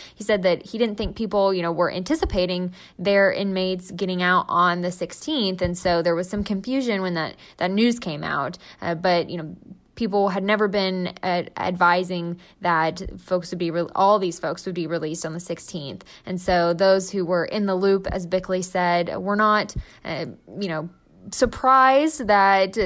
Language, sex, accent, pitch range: English, female, American, 175-205 Hz